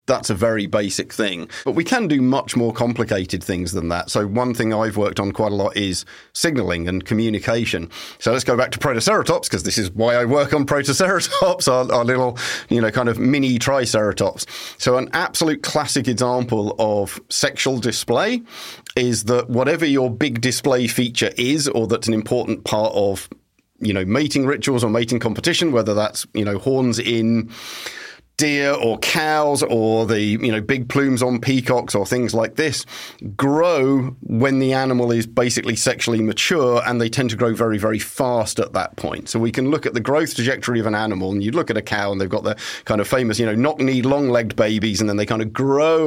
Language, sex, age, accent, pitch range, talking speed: English, male, 40-59, British, 110-130 Hz, 200 wpm